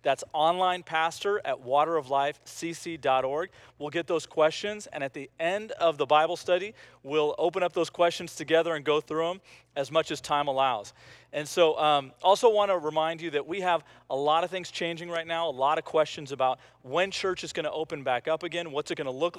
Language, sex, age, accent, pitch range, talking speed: English, male, 40-59, American, 135-170 Hz, 215 wpm